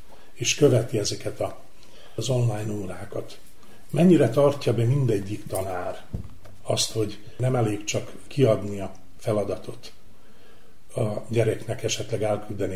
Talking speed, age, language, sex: 110 wpm, 40-59, Hungarian, male